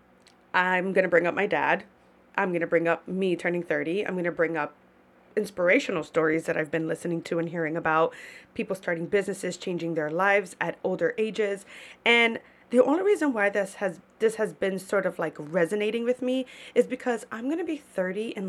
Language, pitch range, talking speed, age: English, 160-220 Hz, 205 wpm, 20-39